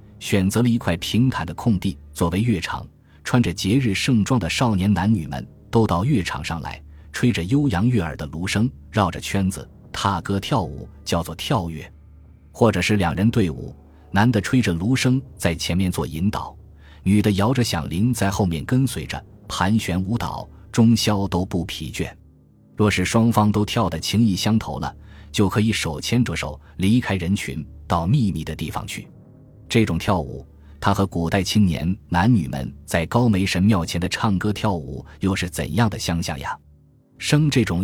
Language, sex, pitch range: Chinese, male, 85-110 Hz